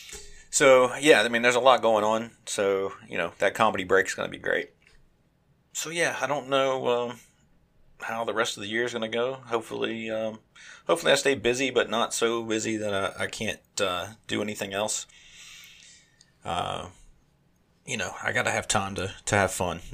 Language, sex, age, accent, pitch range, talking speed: English, male, 30-49, American, 95-115 Hz, 200 wpm